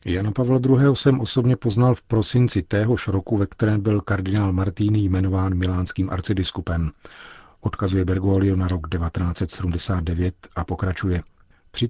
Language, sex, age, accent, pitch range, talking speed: Czech, male, 40-59, native, 90-110 Hz, 130 wpm